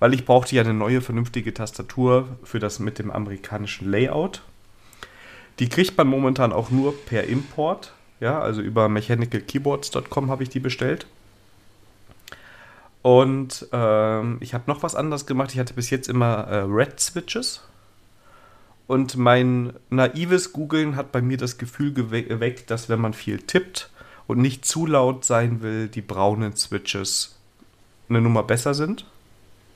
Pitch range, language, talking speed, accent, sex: 105-130 Hz, German, 145 wpm, German, male